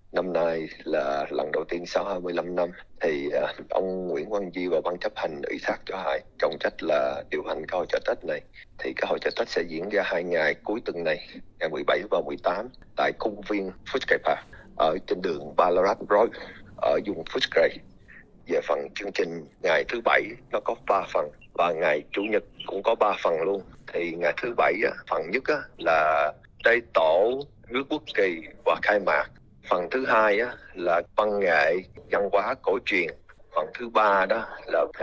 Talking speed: 185 wpm